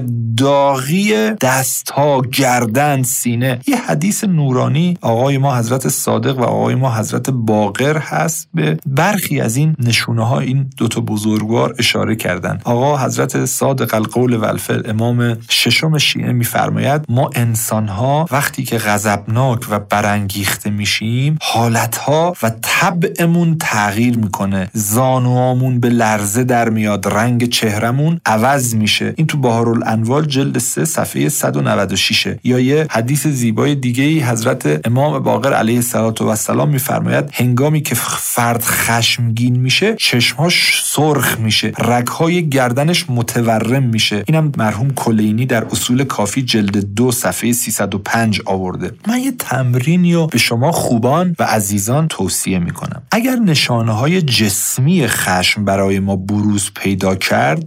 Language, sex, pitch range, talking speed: English, male, 110-140 Hz, 130 wpm